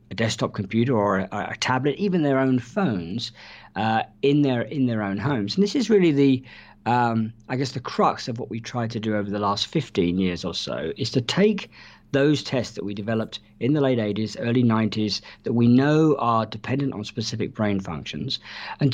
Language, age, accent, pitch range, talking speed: English, 50-69, British, 105-140 Hz, 205 wpm